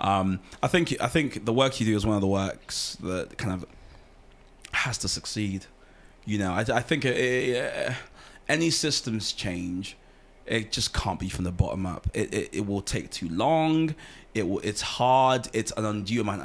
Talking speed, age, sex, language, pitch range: 195 wpm, 20-39, male, English, 100-125 Hz